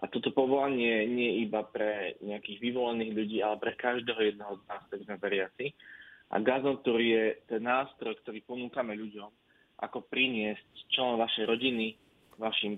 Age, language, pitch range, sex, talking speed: 20-39, Slovak, 110-125 Hz, male, 150 wpm